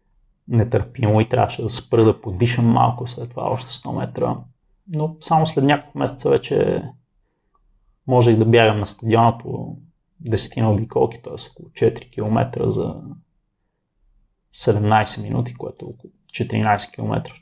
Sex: male